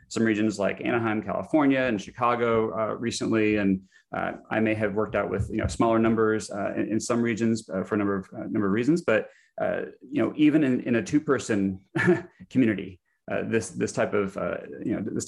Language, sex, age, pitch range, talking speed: English, male, 30-49, 105-120 Hz, 165 wpm